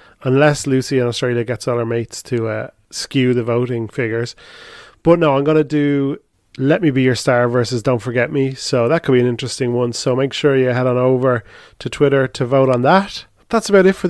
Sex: male